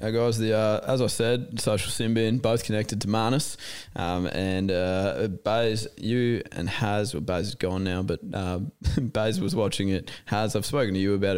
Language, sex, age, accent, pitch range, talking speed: English, male, 20-39, Australian, 90-115 Hz, 195 wpm